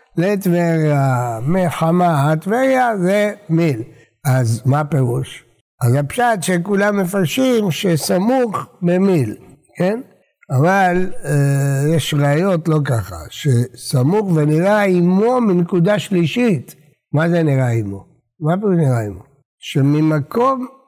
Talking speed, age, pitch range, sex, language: 100 wpm, 60-79, 145-205 Hz, male, Hebrew